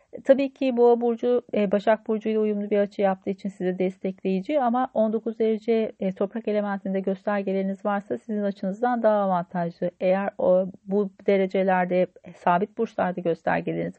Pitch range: 190-245 Hz